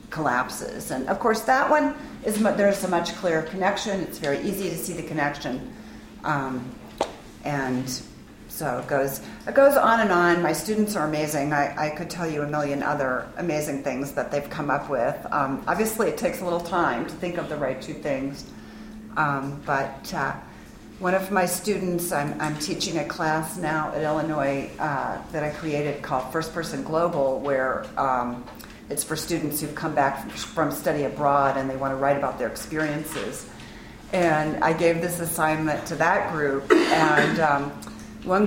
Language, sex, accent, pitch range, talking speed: English, female, American, 145-180 Hz, 180 wpm